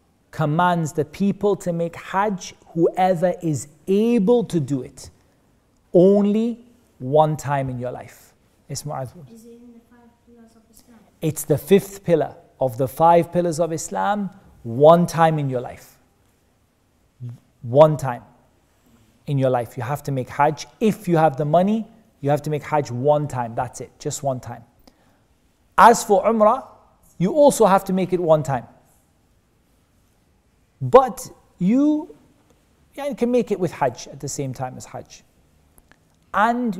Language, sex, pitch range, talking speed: English, male, 130-190 Hz, 140 wpm